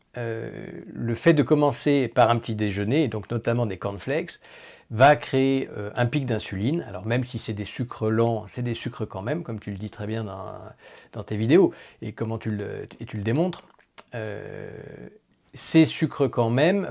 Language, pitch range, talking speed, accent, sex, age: French, 110-150 Hz, 195 wpm, French, male, 50-69